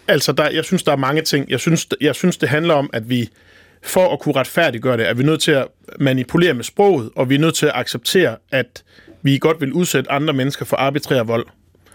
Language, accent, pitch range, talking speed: Danish, native, 125-170 Hz, 235 wpm